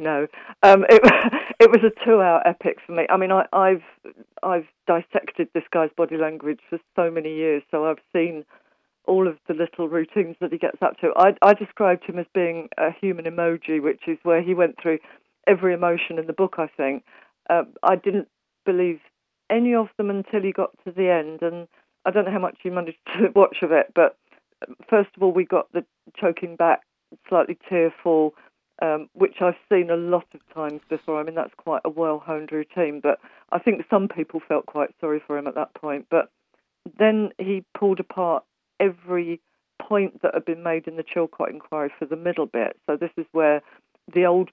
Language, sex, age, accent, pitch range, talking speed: English, female, 50-69, British, 155-185 Hz, 200 wpm